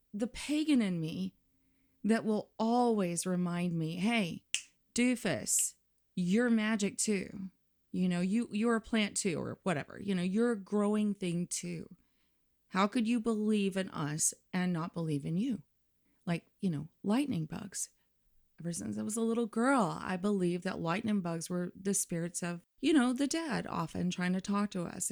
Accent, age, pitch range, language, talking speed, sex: American, 30-49, 170-220 Hz, English, 170 wpm, female